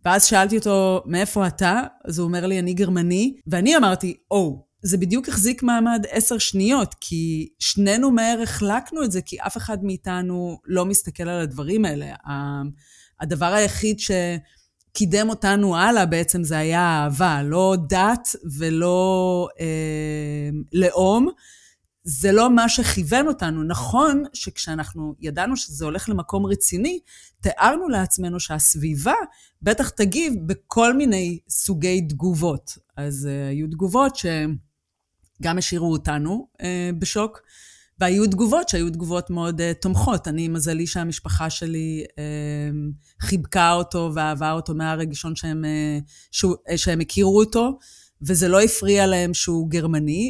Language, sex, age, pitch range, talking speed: Hebrew, female, 30-49, 160-210 Hz, 130 wpm